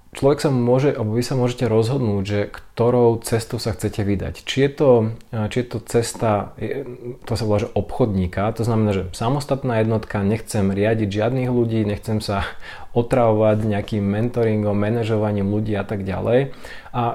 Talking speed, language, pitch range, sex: 160 wpm, Slovak, 100-120 Hz, male